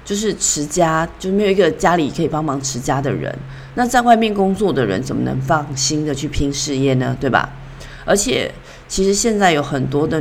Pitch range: 140-180 Hz